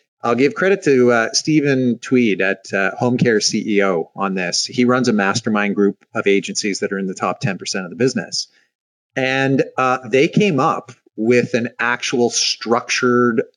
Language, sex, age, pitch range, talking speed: English, male, 30-49, 105-135 Hz, 170 wpm